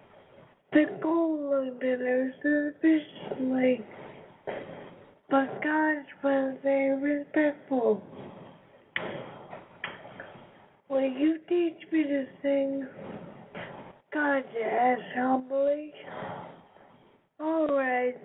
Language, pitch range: English, 255-290 Hz